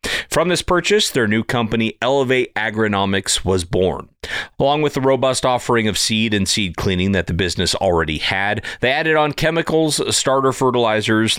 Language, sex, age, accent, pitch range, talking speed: English, male, 40-59, American, 95-130 Hz, 165 wpm